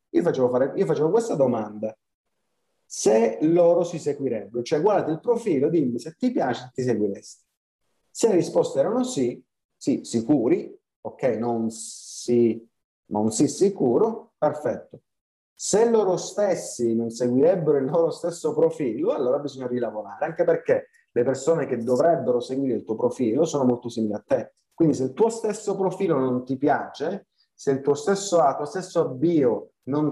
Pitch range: 120-190 Hz